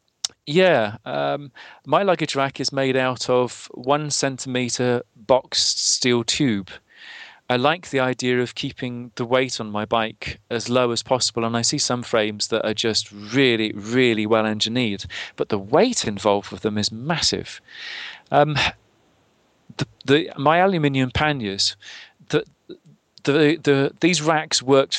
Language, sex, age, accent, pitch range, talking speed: English, male, 40-59, British, 115-140 Hz, 135 wpm